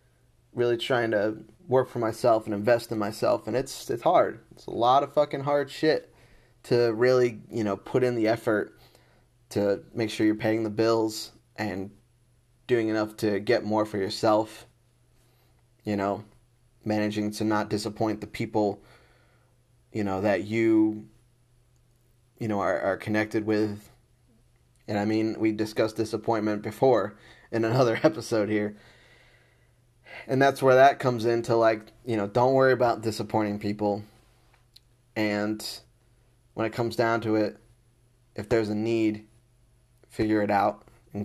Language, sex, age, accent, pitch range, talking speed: English, male, 20-39, American, 110-120 Hz, 150 wpm